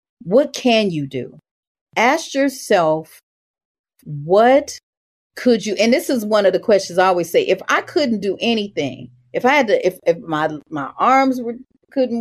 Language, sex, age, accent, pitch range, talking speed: English, female, 40-59, American, 165-225 Hz, 170 wpm